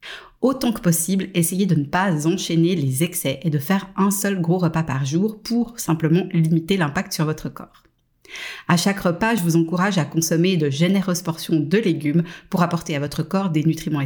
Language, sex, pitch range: French, female, 160-190 Hz